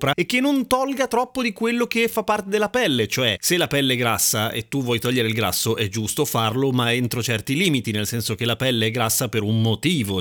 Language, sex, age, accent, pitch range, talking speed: Italian, male, 30-49, native, 115-155 Hz, 240 wpm